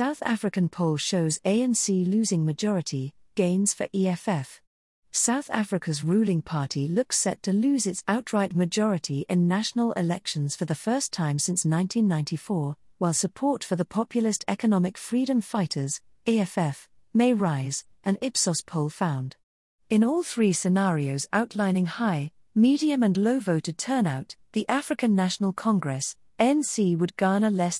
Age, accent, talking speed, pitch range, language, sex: 40-59, British, 135 wpm, 165-220 Hz, English, female